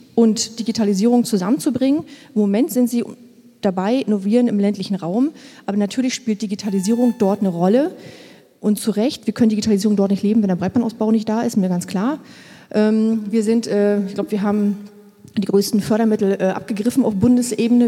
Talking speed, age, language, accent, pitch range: 175 wpm, 30-49, German, German, 195-230 Hz